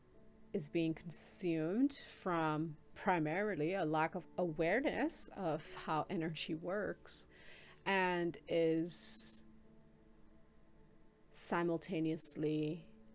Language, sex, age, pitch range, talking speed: English, female, 30-49, 145-175 Hz, 75 wpm